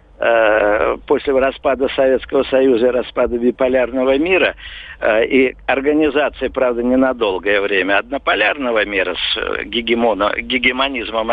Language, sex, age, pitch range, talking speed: Russian, male, 50-69, 120-150 Hz, 90 wpm